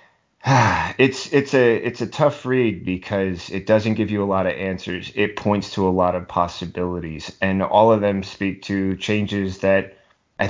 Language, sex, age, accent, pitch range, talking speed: English, male, 30-49, American, 90-100 Hz, 185 wpm